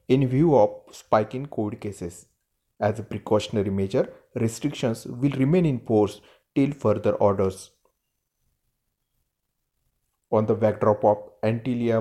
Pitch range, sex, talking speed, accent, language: 105-125 Hz, male, 125 wpm, native, Marathi